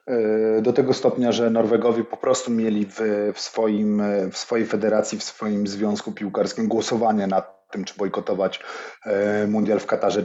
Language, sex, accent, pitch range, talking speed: Polish, male, native, 105-130 Hz, 140 wpm